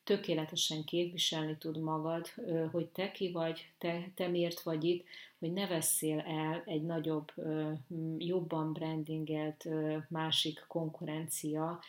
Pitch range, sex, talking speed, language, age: 160-180 Hz, female, 115 wpm, Hungarian, 30-49